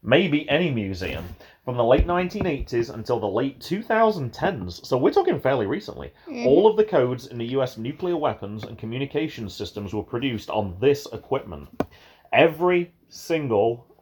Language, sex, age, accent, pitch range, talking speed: English, male, 30-49, British, 105-130 Hz, 150 wpm